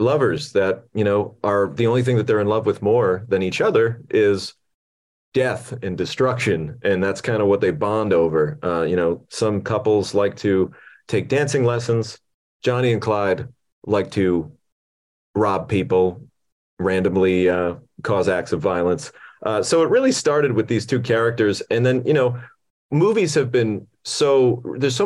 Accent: American